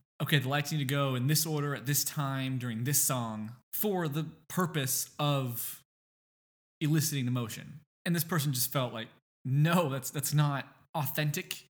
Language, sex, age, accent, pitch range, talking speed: English, male, 20-39, American, 130-165 Hz, 170 wpm